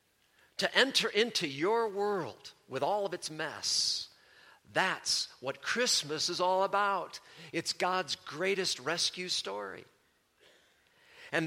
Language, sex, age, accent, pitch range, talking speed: English, male, 50-69, American, 140-200 Hz, 115 wpm